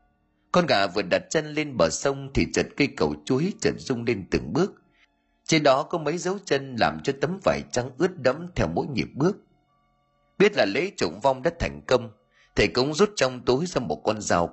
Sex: male